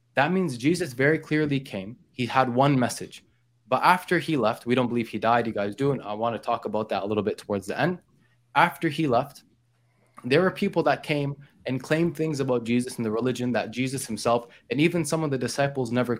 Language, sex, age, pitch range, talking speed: English, male, 20-39, 115-140 Hz, 225 wpm